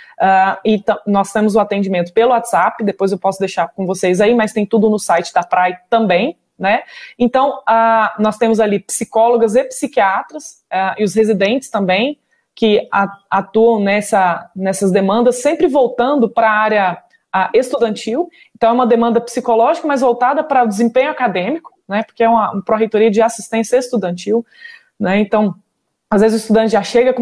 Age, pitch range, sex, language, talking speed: 20-39, 200-235 Hz, female, Portuguese, 175 wpm